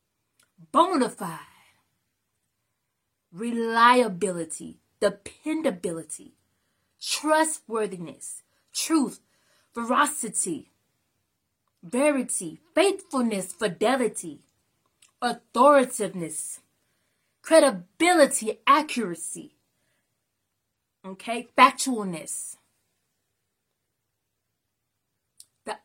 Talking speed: 35 wpm